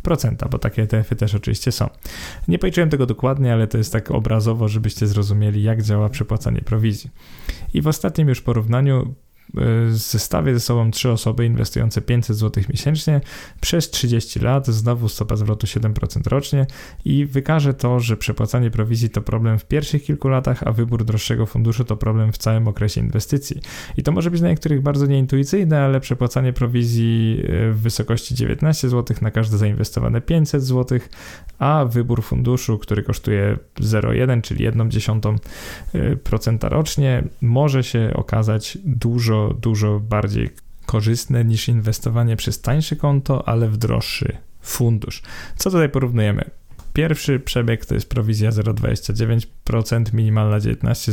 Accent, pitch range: native, 110-130 Hz